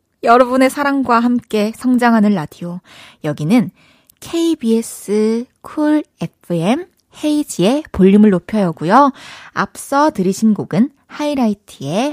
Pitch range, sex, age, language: 185-240 Hz, female, 20-39, Korean